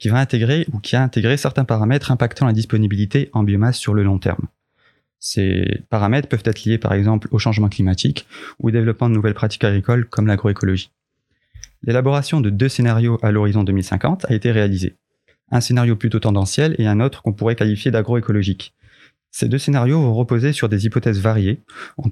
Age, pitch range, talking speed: 20-39, 110-130 Hz, 185 wpm